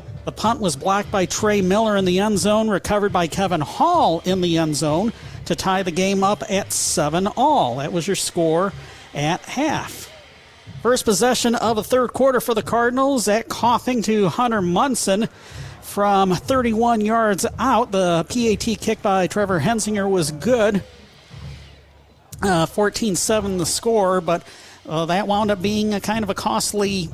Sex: male